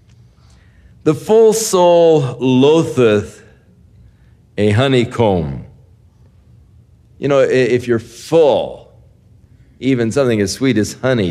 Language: English